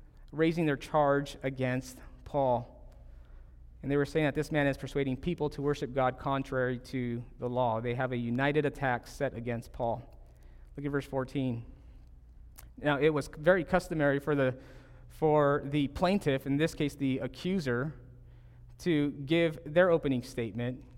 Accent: American